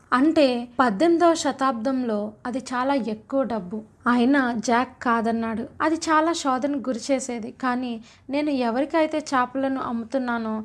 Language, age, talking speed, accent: Telugu, 20-39, 105 wpm, native